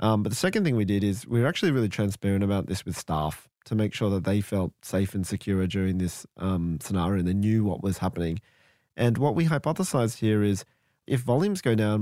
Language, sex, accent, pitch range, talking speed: English, male, Australian, 100-130 Hz, 230 wpm